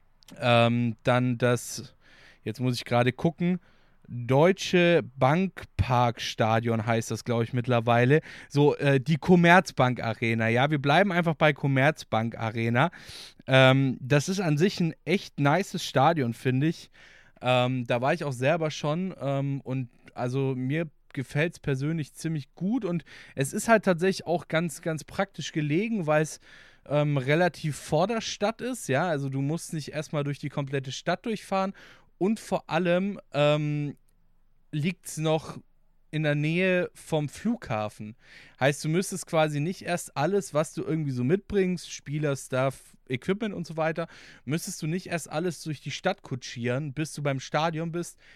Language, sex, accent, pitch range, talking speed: German, male, German, 130-170 Hz, 160 wpm